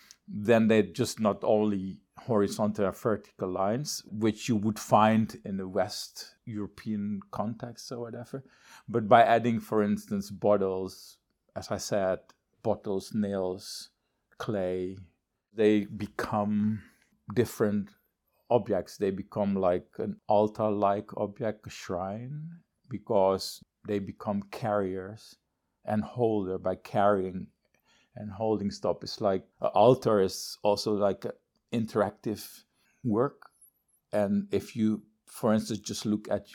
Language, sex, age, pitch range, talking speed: English, male, 50-69, 95-110 Hz, 120 wpm